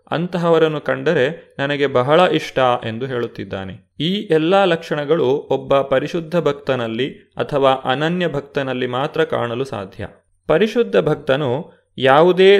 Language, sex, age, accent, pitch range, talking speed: Kannada, male, 30-49, native, 125-160 Hz, 105 wpm